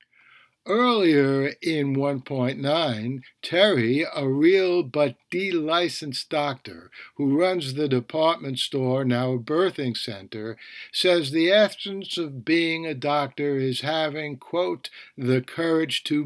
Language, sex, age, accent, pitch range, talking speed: English, male, 60-79, American, 130-165 Hz, 115 wpm